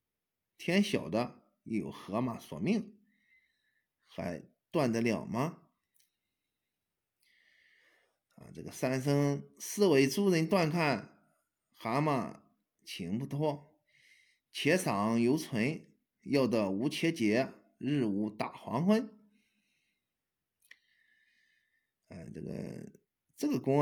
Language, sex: Chinese, male